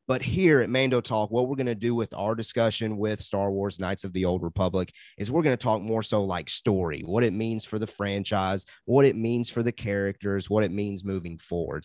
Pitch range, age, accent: 100-120 Hz, 30-49, American